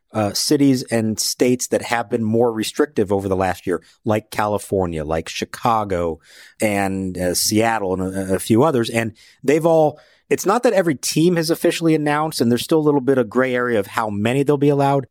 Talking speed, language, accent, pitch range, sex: 205 wpm, English, American, 105-135 Hz, male